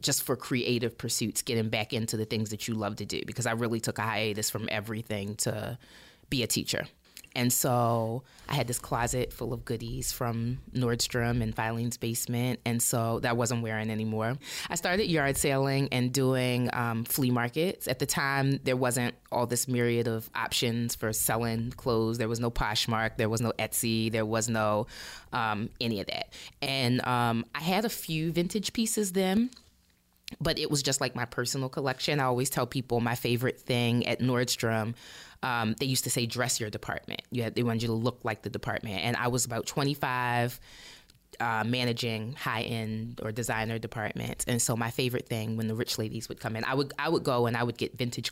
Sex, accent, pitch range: female, American, 115-125 Hz